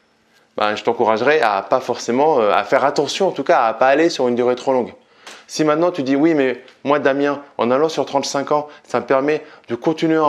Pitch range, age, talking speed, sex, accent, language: 130-160 Hz, 20-39, 235 wpm, male, French, French